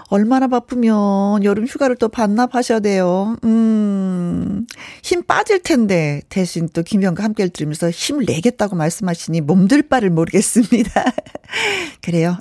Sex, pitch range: female, 185-260 Hz